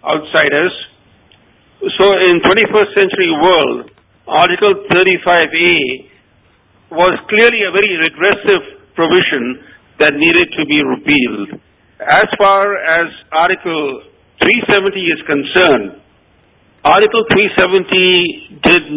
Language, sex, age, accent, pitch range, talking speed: English, male, 50-69, Indian, 155-200 Hz, 90 wpm